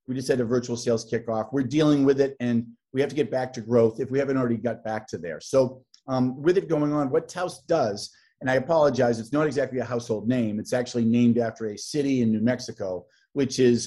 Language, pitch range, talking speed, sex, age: English, 120-145 Hz, 240 wpm, male, 40-59